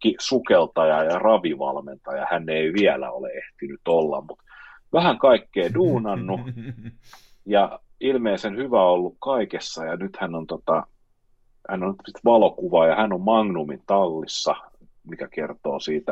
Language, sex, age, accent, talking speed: Finnish, male, 30-49, native, 125 wpm